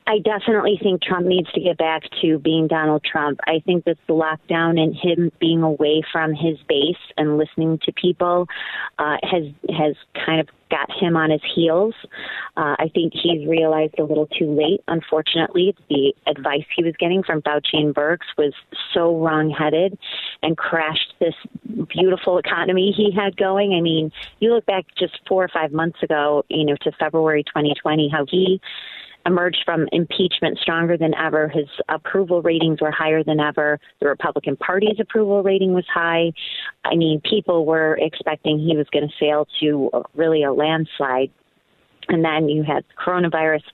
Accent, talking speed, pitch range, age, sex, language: American, 175 wpm, 155-185 Hz, 30-49, female, English